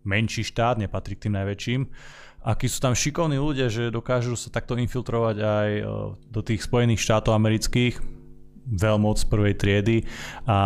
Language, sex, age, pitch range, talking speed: Slovak, male, 20-39, 100-120 Hz, 160 wpm